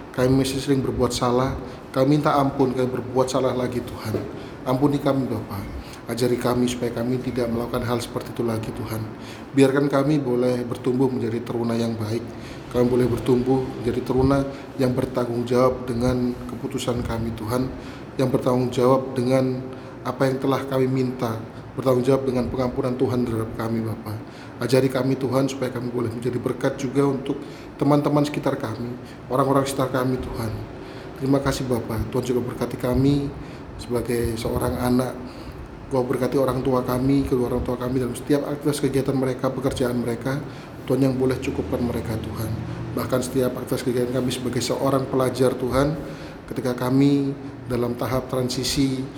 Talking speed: 155 wpm